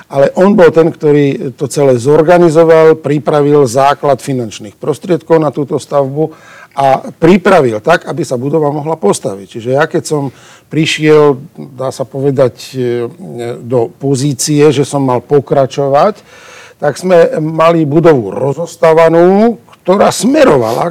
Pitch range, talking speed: 135-170 Hz, 125 wpm